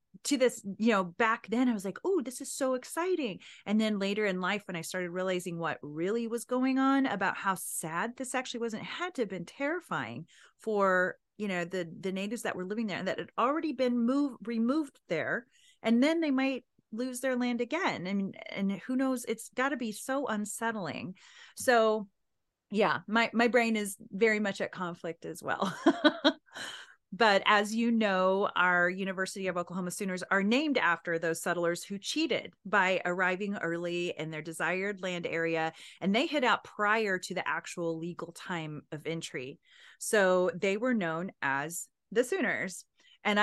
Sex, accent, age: female, American, 30-49